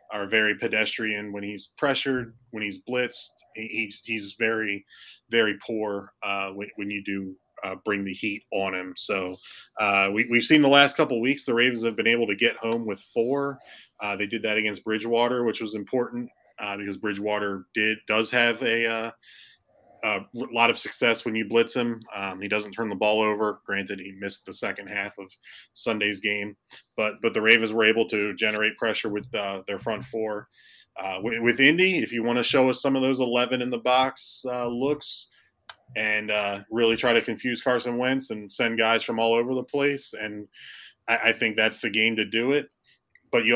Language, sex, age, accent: English, male, 20-39, American